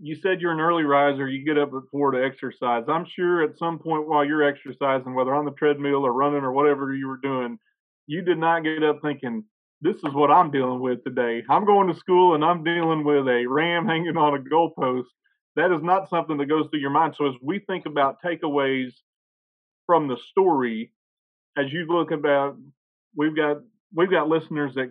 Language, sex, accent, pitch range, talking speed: English, male, American, 125-160 Hz, 210 wpm